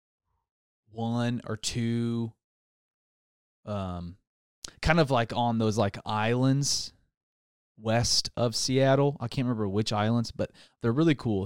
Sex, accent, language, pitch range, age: male, American, English, 100-120 Hz, 20-39